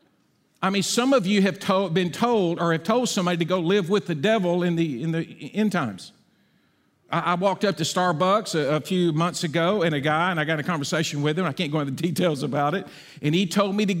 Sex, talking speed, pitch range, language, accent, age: male, 255 wpm, 160-205 Hz, English, American, 50-69